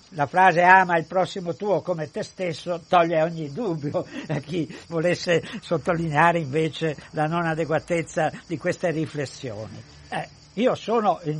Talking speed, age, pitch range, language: 140 wpm, 60-79, 160-190 Hz, Italian